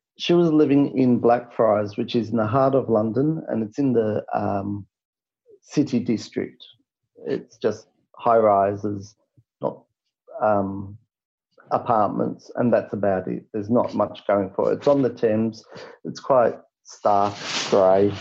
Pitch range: 105-140 Hz